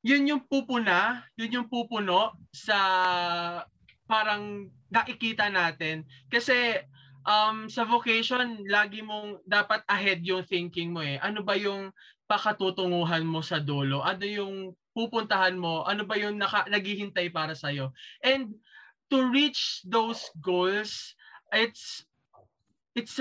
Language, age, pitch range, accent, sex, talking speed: Filipino, 20-39, 180-220 Hz, native, male, 120 wpm